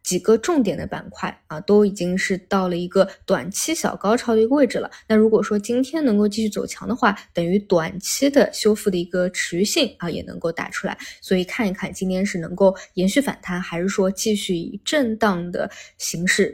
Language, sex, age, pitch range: Chinese, female, 20-39, 185-220 Hz